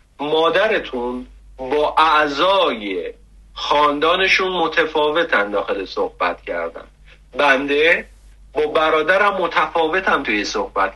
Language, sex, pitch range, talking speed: Persian, male, 135-205 Hz, 75 wpm